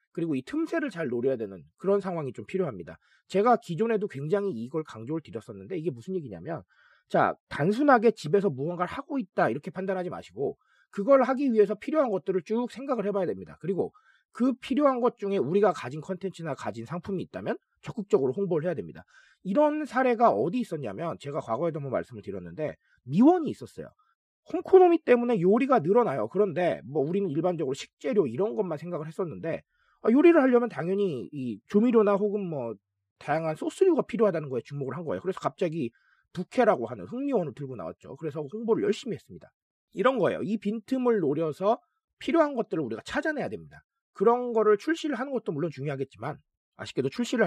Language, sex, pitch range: Korean, male, 165-245 Hz